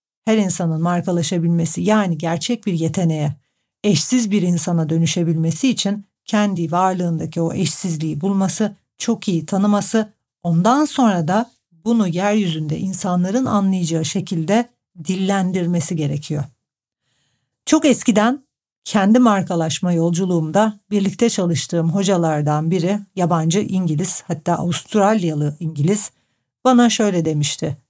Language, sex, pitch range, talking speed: Turkish, female, 165-210 Hz, 100 wpm